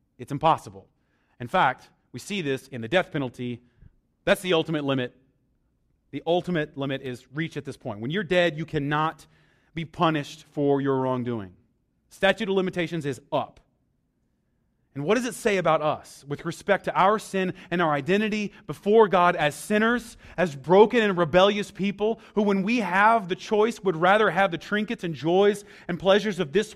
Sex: male